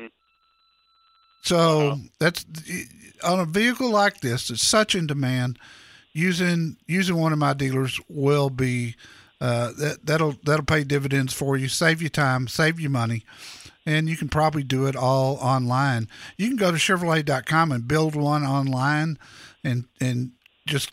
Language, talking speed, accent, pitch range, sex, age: English, 150 wpm, American, 130-175 Hz, male, 50-69